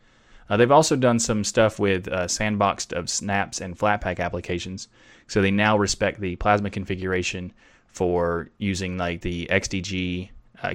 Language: English